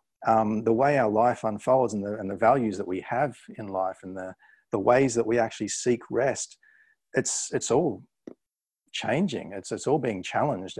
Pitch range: 105-130 Hz